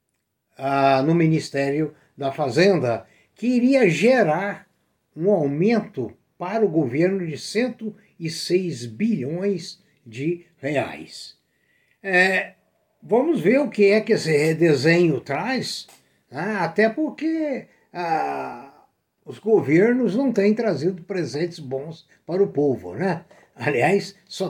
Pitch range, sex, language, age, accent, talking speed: 160-225 Hz, male, Portuguese, 60-79, Brazilian, 110 wpm